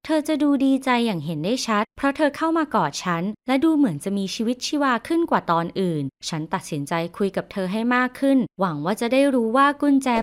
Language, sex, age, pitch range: Thai, female, 20-39, 175-240 Hz